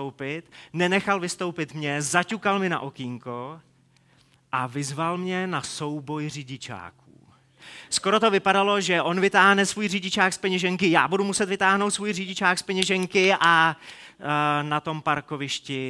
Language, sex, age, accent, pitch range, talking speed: Czech, male, 30-49, native, 145-190 Hz, 130 wpm